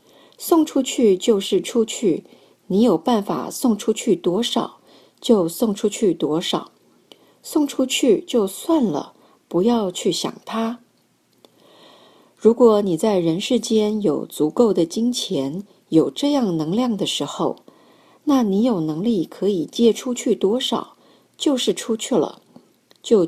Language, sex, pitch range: Chinese, female, 185-250 Hz